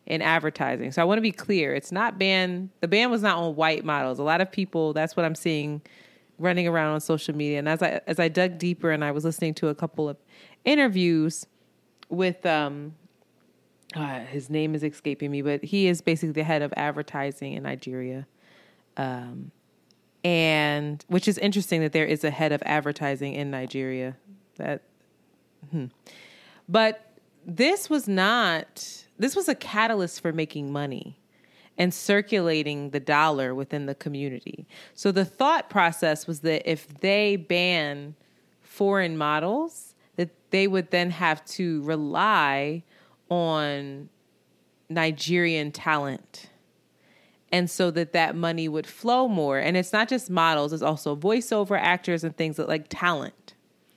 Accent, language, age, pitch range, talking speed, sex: American, English, 30-49, 150-185 Hz, 155 wpm, female